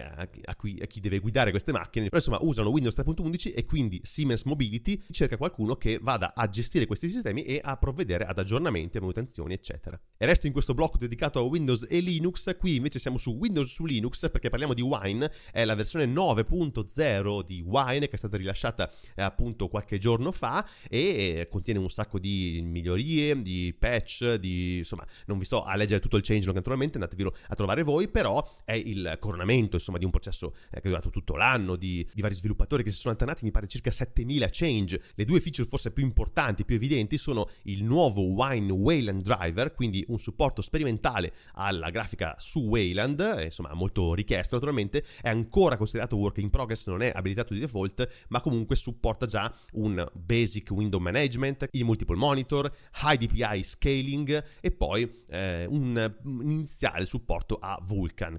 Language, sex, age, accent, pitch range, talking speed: Italian, male, 30-49, native, 100-135 Hz, 180 wpm